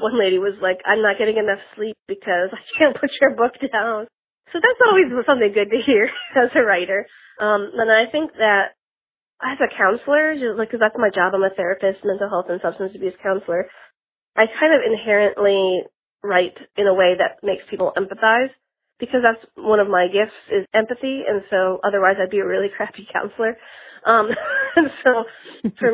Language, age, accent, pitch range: English, 30-49, American, 195-230 Hz